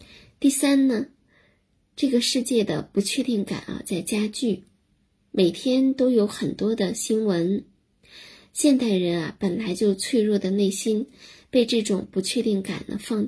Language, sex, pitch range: Chinese, female, 195-245 Hz